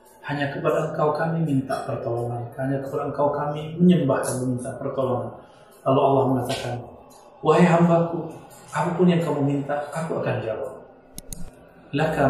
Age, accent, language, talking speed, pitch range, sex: 40-59, native, Indonesian, 130 wpm, 125-155 Hz, male